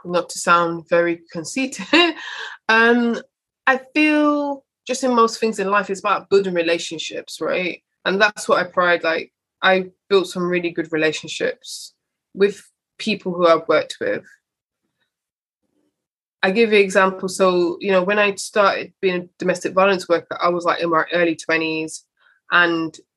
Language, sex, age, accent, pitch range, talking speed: English, female, 20-39, British, 175-215 Hz, 160 wpm